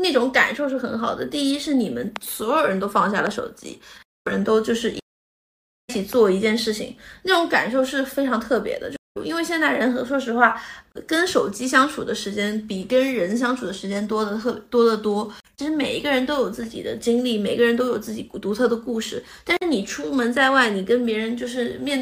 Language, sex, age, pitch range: Chinese, female, 20-39, 220-265 Hz